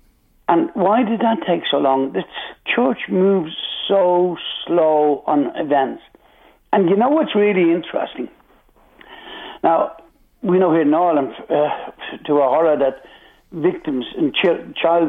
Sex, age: male, 60-79